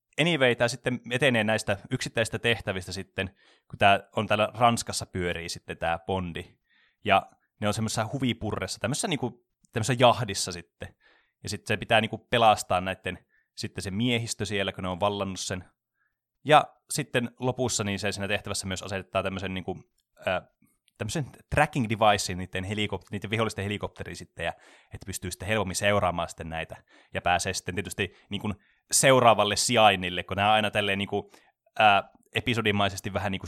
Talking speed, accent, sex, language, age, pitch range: 155 wpm, native, male, Finnish, 20-39, 95-115 Hz